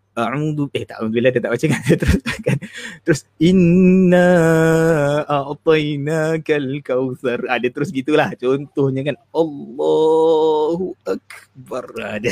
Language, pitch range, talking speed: Malay, 120-165 Hz, 110 wpm